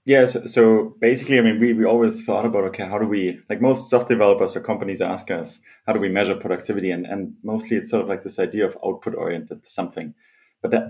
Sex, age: male, 30-49